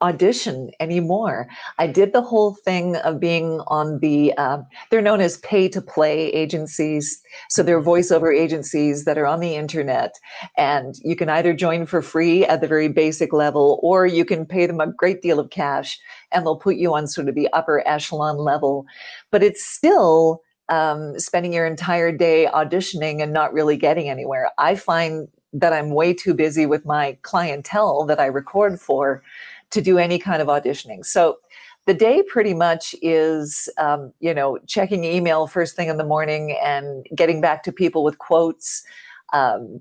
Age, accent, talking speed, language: 40-59, American, 175 wpm, English